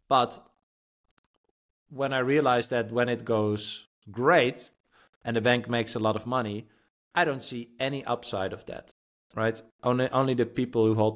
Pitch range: 100-120 Hz